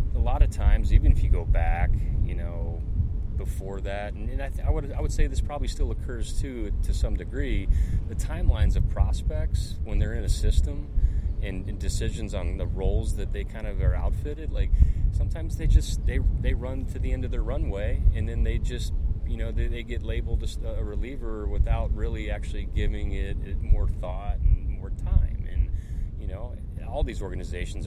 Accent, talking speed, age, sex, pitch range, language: American, 200 wpm, 30-49, male, 80-95 Hz, English